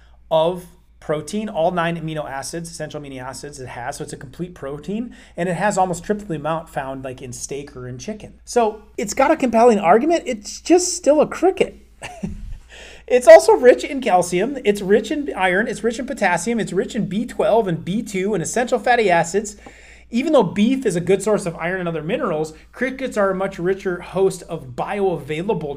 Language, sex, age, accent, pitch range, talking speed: English, male, 30-49, American, 165-230 Hz, 195 wpm